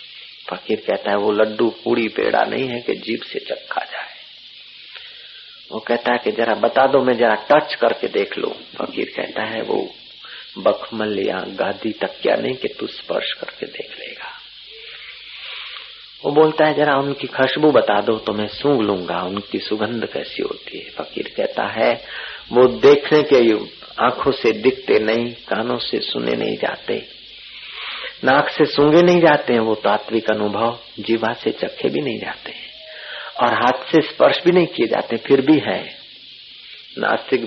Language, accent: Hindi, native